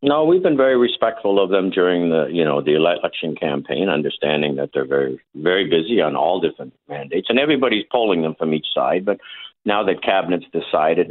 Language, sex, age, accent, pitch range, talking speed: English, male, 60-79, American, 80-100 Hz, 195 wpm